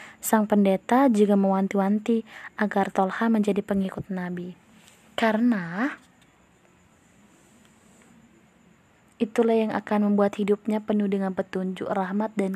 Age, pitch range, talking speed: 20-39, 190-230 Hz, 95 wpm